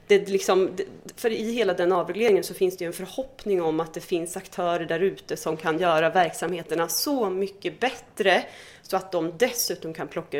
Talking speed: 185 wpm